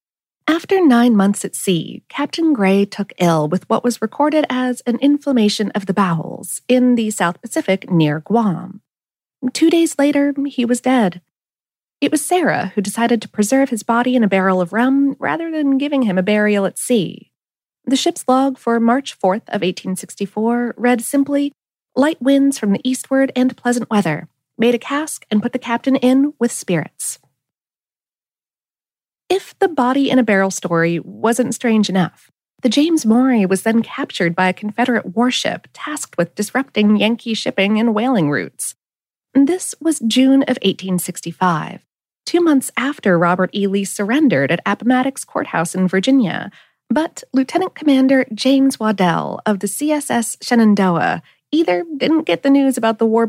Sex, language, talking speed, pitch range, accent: female, English, 160 wpm, 200-275 Hz, American